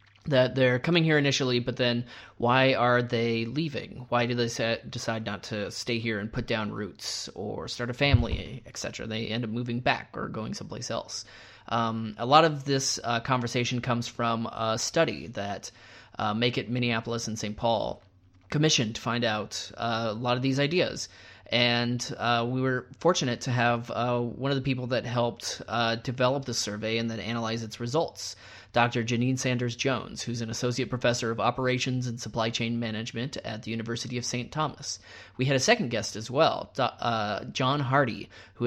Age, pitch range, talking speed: 30-49, 115-125 Hz, 185 wpm